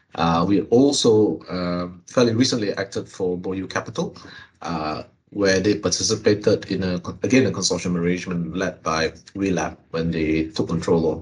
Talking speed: 150 wpm